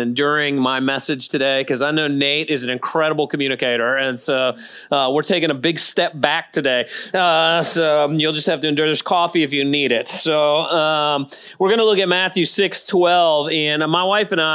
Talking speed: 205 wpm